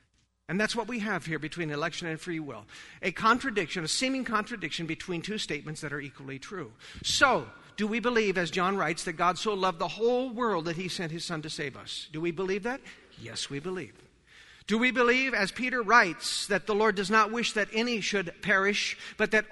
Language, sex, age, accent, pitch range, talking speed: English, male, 50-69, American, 170-225 Hz, 215 wpm